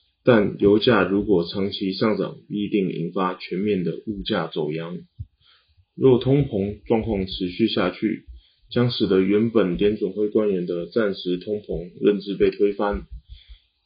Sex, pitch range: male, 90-110 Hz